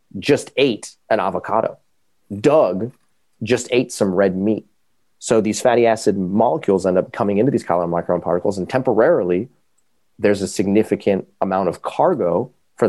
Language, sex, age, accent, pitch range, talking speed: English, male, 30-49, American, 95-115 Hz, 145 wpm